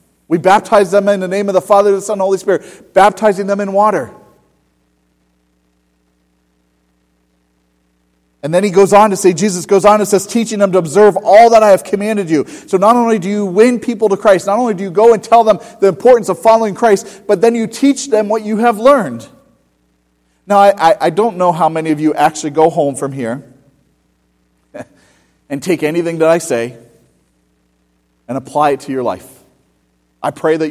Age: 40-59